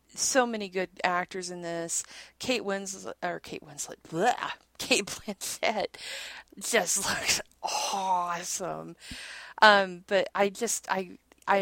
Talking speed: 115 wpm